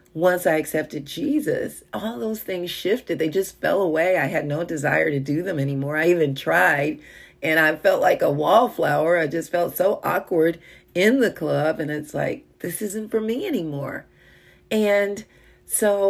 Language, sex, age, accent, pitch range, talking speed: English, female, 40-59, American, 150-185 Hz, 175 wpm